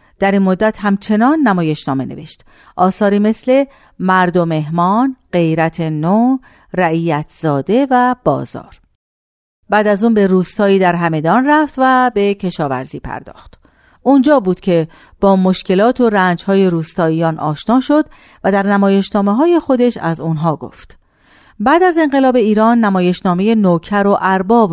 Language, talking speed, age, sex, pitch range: Persian, 130 wpm, 40-59, female, 165-230 Hz